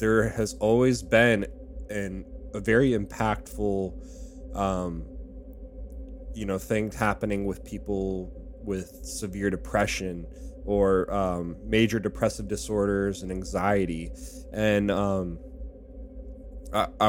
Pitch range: 90-110 Hz